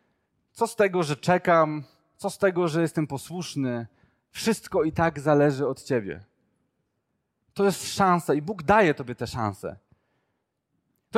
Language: Polish